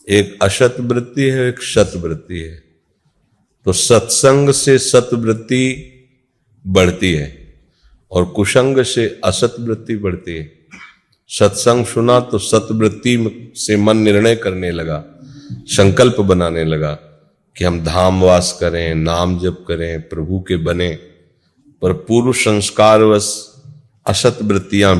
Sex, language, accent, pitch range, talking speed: male, Hindi, native, 90-120 Hz, 120 wpm